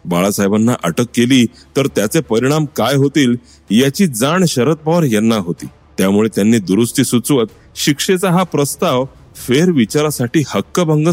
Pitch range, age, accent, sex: 105-155 Hz, 40-59, native, male